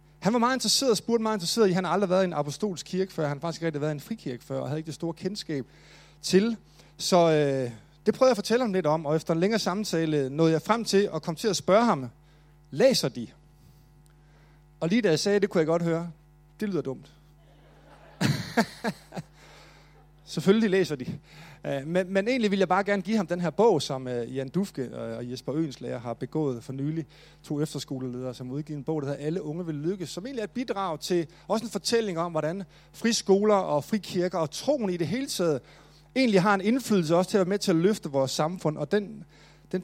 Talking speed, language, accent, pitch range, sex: 225 wpm, Danish, native, 150-195 Hz, male